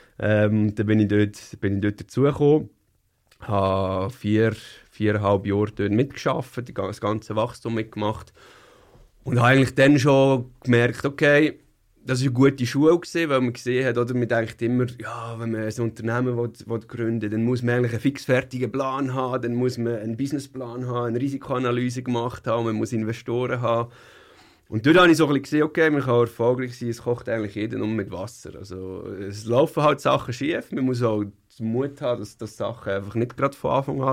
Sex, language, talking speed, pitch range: male, English, 190 wpm, 105-130 Hz